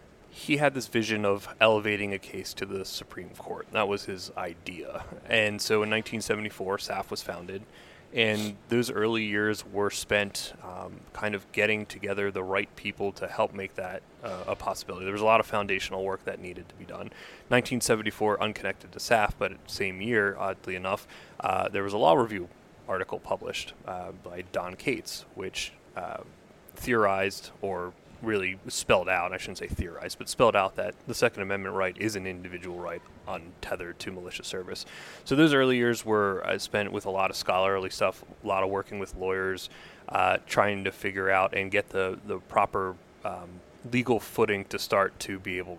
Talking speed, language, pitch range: 185 wpm, English, 95-105 Hz